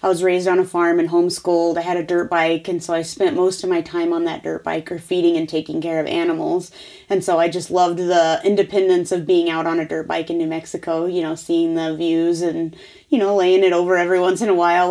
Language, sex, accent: English, female, American